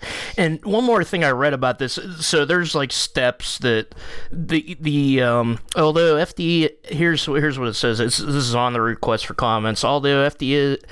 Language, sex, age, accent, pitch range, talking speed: English, male, 20-39, American, 120-145 Hz, 180 wpm